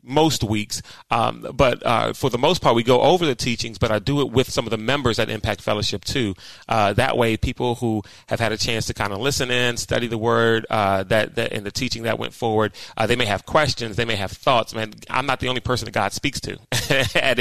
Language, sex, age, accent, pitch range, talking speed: English, male, 30-49, American, 110-130 Hz, 250 wpm